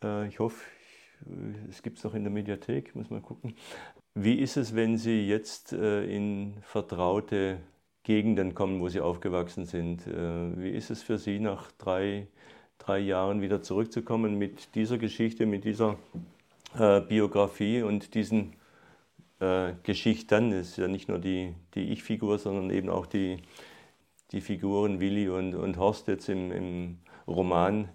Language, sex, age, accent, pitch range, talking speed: German, male, 40-59, German, 95-110 Hz, 145 wpm